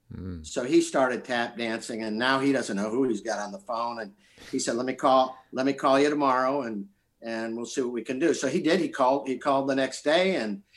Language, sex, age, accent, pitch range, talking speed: English, male, 50-69, American, 120-155 Hz, 255 wpm